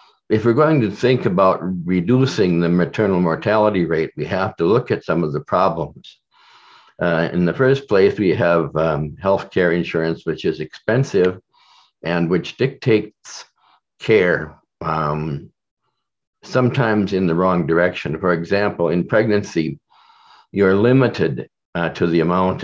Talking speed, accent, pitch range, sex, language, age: 140 wpm, American, 85-105 Hz, male, English, 60-79